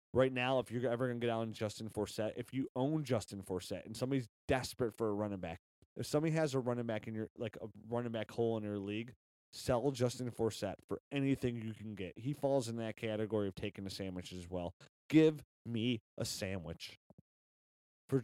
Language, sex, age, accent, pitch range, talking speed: English, male, 30-49, American, 95-125 Hz, 210 wpm